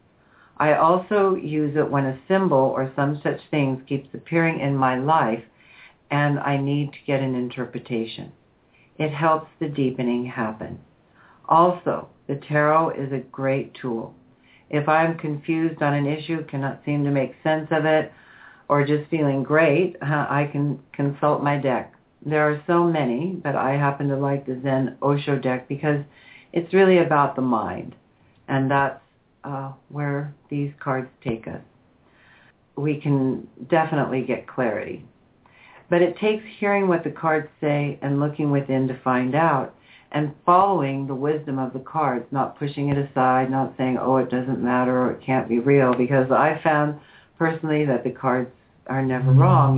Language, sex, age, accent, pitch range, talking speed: English, female, 60-79, American, 130-150 Hz, 165 wpm